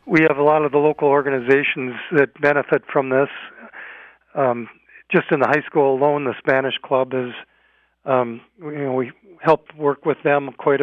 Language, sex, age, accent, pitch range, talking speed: English, male, 50-69, American, 130-150 Hz, 175 wpm